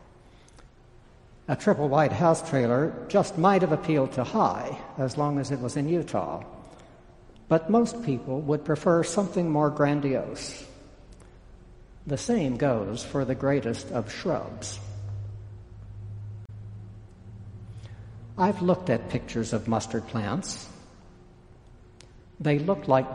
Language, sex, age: English, male, 60-79